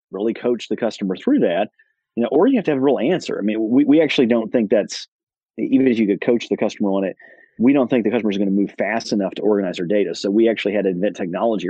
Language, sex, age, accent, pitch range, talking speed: English, male, 30-49, American, 100-120 Hz, 280 wpm